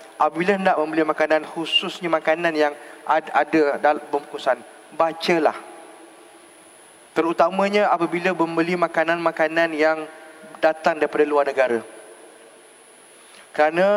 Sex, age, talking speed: male, 20-39, 90 wpm